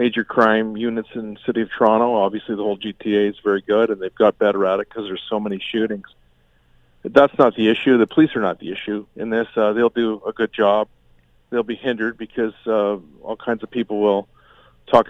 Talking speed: 225 wpm